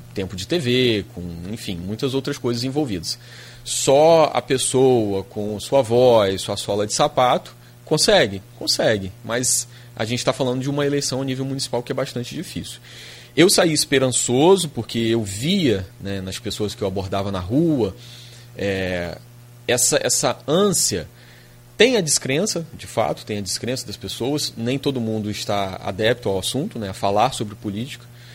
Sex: male